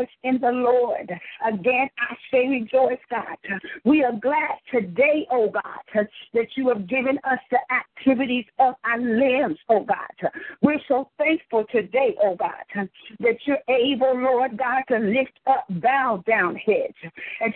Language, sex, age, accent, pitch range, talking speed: English, female, 50-69, American, 235-270 Hz, 150 wpm